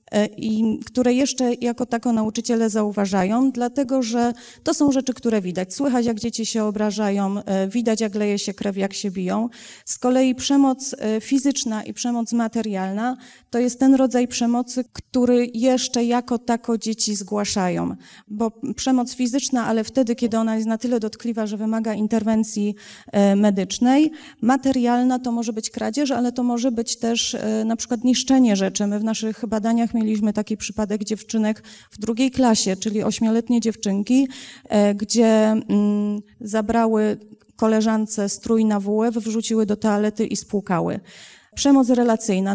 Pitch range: 215-245 Hz